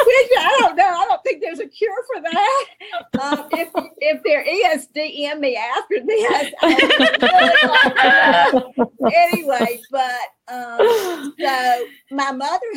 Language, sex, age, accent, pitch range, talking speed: English, female, 50-69, American, 225-290 Hz, 125 wpm